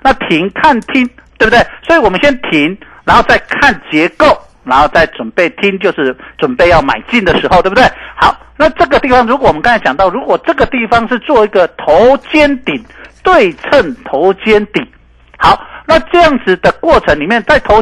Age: 50-69